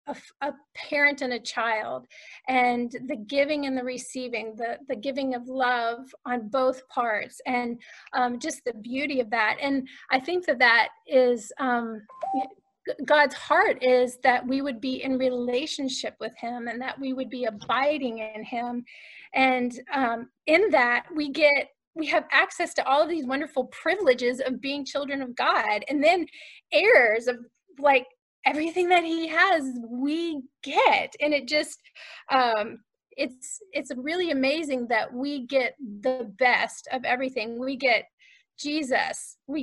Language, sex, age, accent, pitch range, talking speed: English, female, 30-49, American, 250-295 Hz, 155 wpm